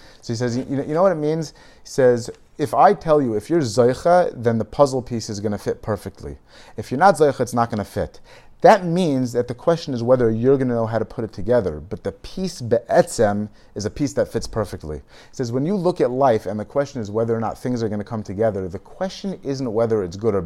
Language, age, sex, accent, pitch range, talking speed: English, 30-49, male, American, 110-145 Hz, 260 wpm